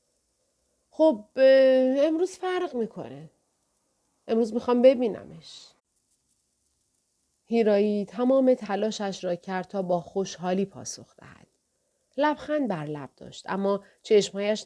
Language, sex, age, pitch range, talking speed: Persian, female, 40-59, 180-245 Hz, 95 wpm